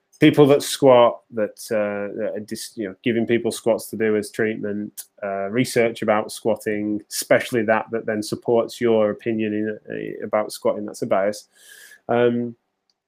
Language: English